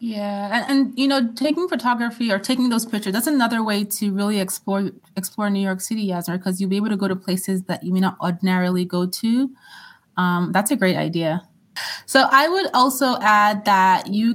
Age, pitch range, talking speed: 20-39, 185-220 Hz, 205 wpm